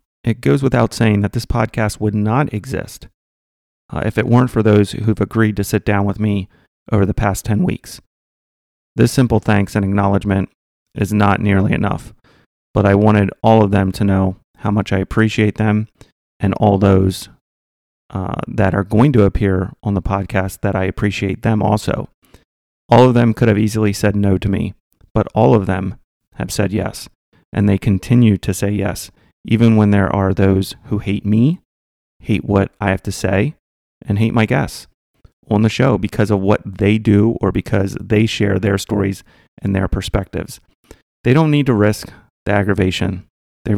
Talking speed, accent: 180 wpm, American